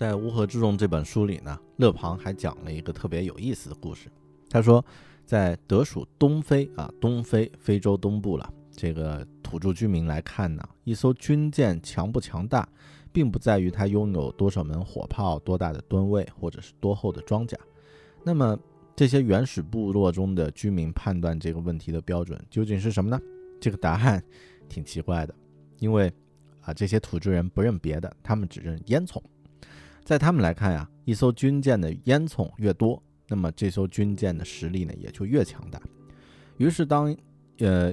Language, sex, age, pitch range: Chinese, male, 20-39, 85-115 Hz